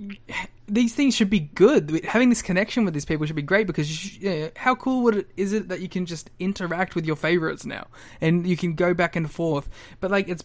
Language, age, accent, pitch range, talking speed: English, 20-39, Australian, 145-190 Hz, 255 wpm